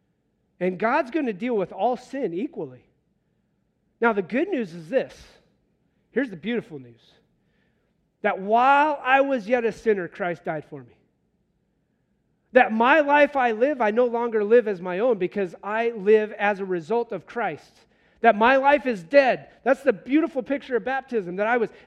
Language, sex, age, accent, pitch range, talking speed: English, male, 40-59, American, 225-285 Hz, 175 wpm